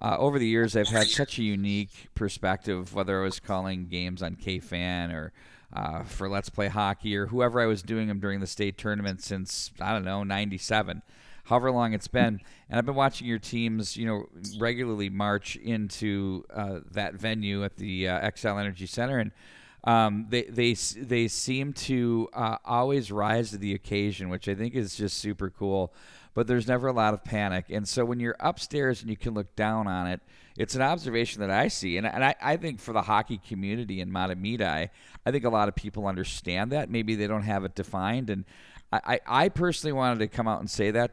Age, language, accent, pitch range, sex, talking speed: 40-59, English, American, 95-115 Hz, male, 210 wpm